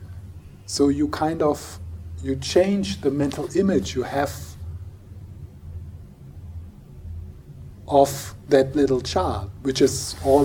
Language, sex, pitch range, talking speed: English, male, 90-135 Hz, 105 wpm